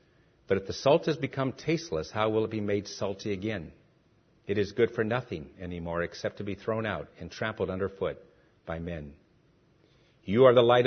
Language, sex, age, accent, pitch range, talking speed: English, male, 50-69, American, 105-130 Hz, 190 wpm